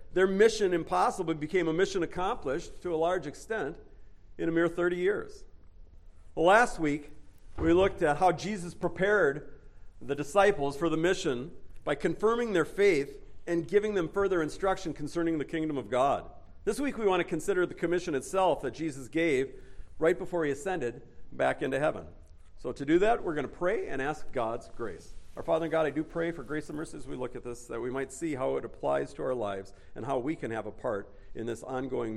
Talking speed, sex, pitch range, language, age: 205 wpm, male, 110-180 Hz, English, 50-69